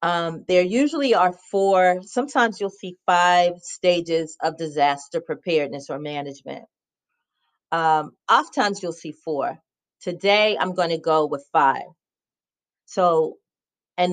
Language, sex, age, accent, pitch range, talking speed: English, female, 40-59, American, 165-205 Hz, 120 wpm